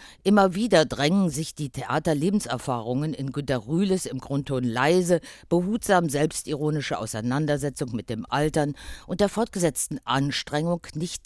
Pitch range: 125-185 Hz